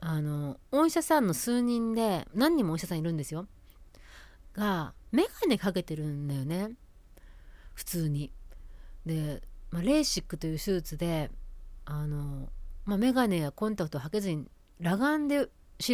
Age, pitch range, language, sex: 40-59, 145-235 Hz, Japanese, female